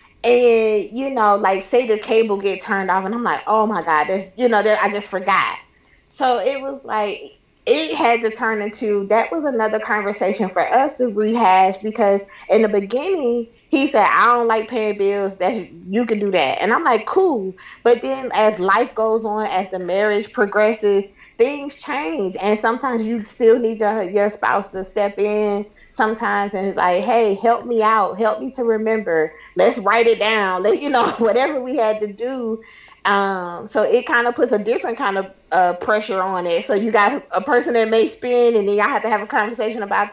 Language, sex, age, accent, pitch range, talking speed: English, female, 20-39, American, 200-235 Hz, 200 wpm